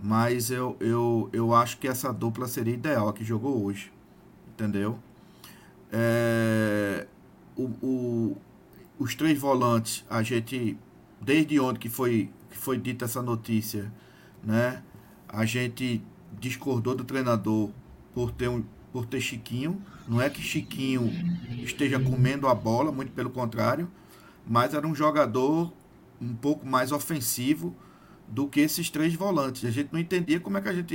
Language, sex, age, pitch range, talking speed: Portuguese, male, 50-69, 120-165 Hz, 150 wpm